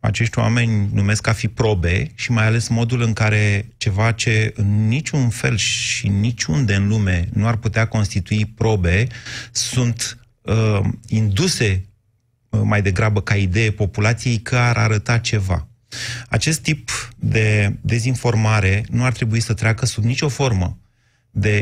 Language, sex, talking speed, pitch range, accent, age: Romanian, male, 145 wpm, 105-125 Hz, native, 30-49